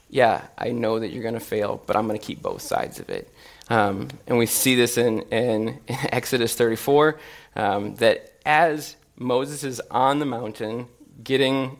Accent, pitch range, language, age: American, 120-150 Hz, English, 20-39